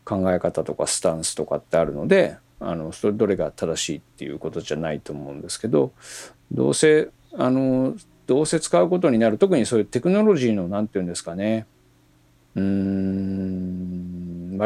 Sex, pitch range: male, 90-150 Hz